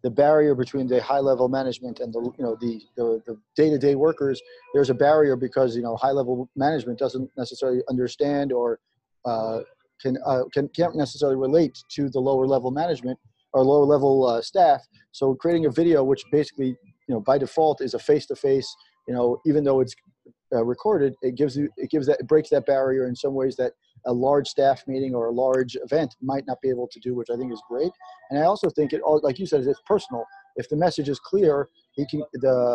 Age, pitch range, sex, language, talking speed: 40-59, 130-150 Hz, male, English, 210 wpm